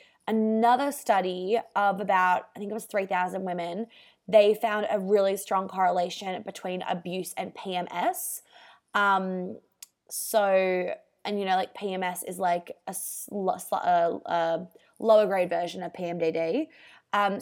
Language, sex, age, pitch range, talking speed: English, female, 20-39, 185-225 Hz, 125 wpm